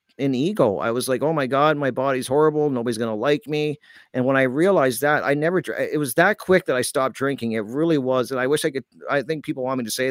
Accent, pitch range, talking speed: American, 115-140 Hz, 265 wpm